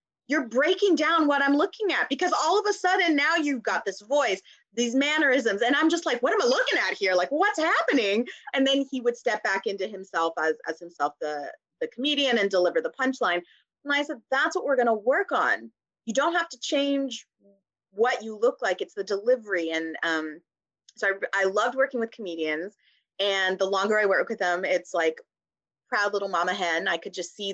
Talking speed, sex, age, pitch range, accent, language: 215 wpm, female, 20-39, 170-250 Hz, American, English